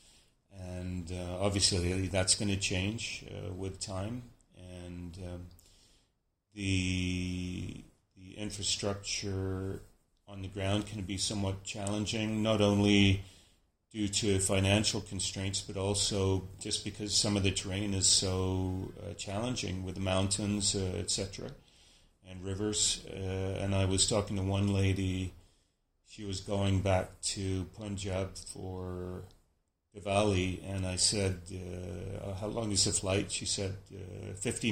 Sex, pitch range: male, 90-100 Hz